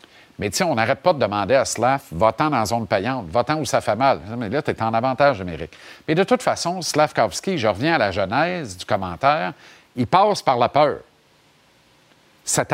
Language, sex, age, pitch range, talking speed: French, male, 50-69, 115-185 Hz, 215 wpm